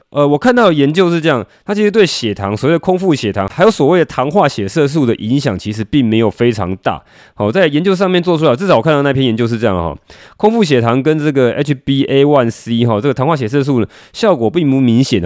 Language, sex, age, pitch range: Chinese, male, 20-39, 115-160 Hz